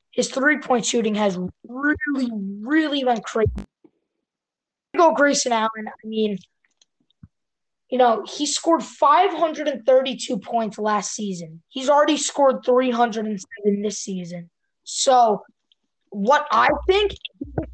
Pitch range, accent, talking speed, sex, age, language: 220-270 Hz, American, 110 wpm, female, 20-39, English